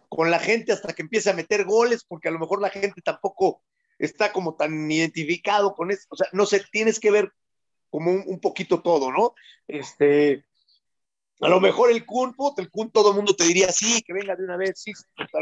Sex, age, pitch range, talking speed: male, 40-59, 155-205 Hz, 215 wpm